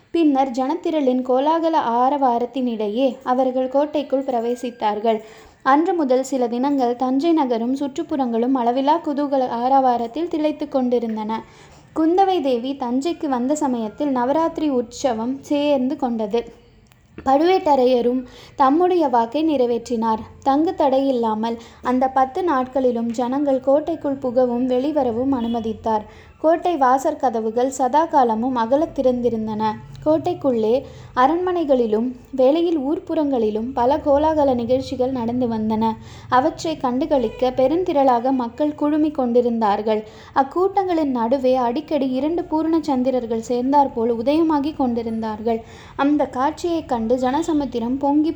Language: Tamil